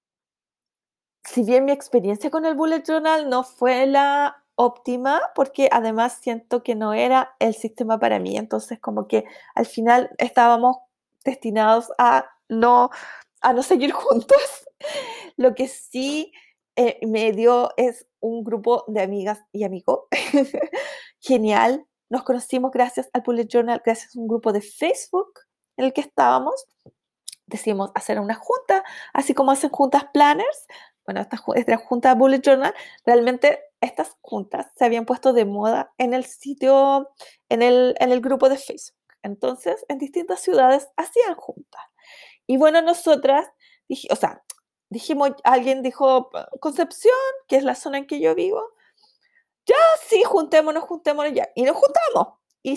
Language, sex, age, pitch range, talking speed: Spanish, female, 30-49, 240-305 Hz, 145 wpm